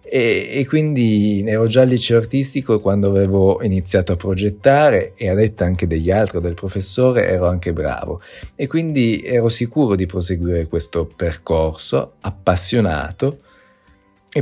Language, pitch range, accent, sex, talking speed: Italian, 90-115 Hz, native, male, 135 wpm